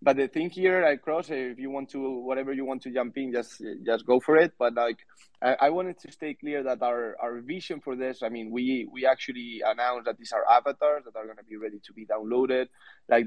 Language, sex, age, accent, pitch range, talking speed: English, male, 20-39, Spanish, 115-135 Hz, 245 wpm